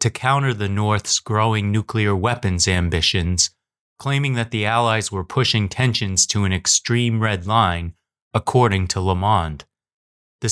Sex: male